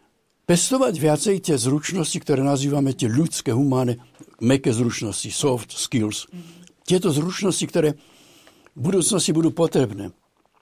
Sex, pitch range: male, 120-155 Hz